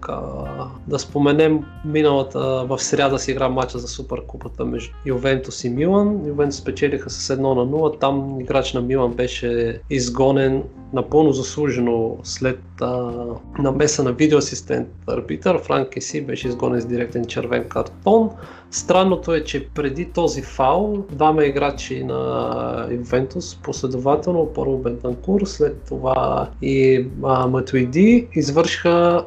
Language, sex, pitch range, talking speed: Bulgarian, male, 125-155 Hz, 125 wpm